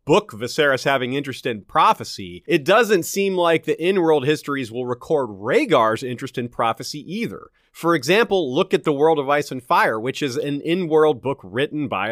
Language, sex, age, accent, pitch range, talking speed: English, male, 30-49, American, 140-200 Hz, 185 wpm